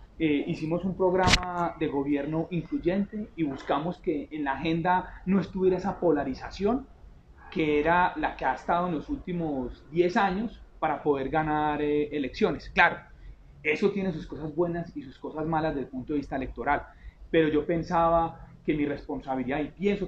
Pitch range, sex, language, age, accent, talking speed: 145-185 Hz, male, Spanish, 30-49, Colombian, 170 wpm